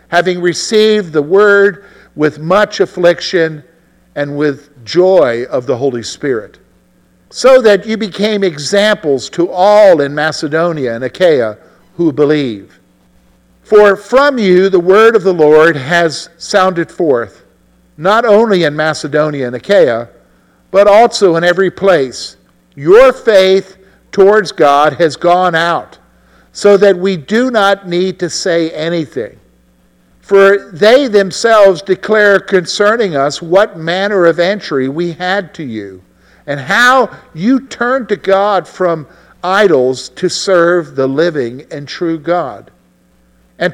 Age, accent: 50-69, American